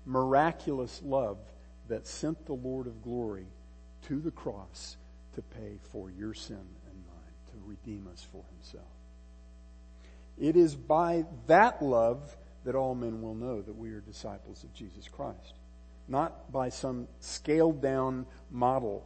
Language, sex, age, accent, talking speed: English, male, 50-69, American, 140 wpm